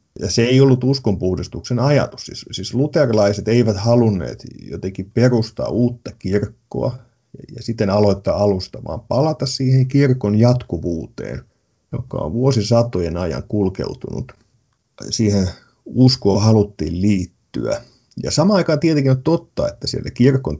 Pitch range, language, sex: 100-130 Hz, Finnish, male